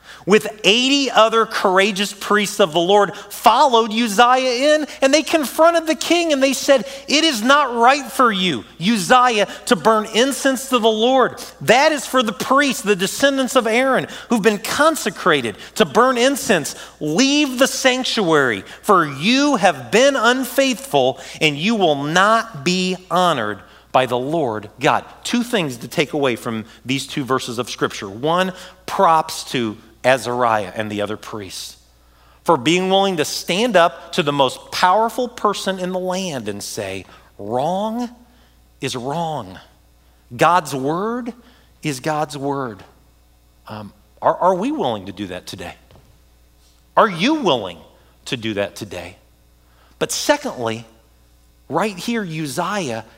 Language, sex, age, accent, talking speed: English, male, 40-59, American, 145 wpm